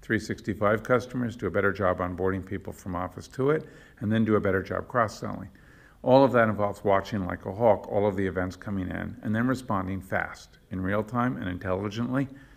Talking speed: 200 wpm